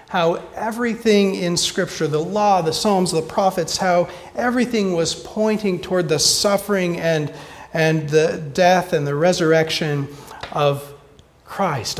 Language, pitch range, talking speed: English, 155-200 Hz, 130 wpm